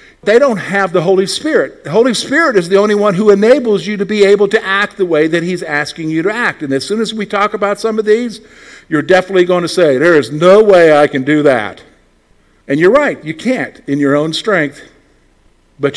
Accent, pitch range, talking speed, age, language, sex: American, 150-210 Hz, 235 wpm, 50-69, English, male